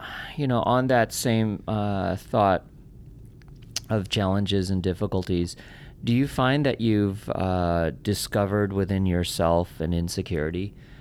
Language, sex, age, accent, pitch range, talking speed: English, male, 40-59, American, 80-110 Hz, 120 wpm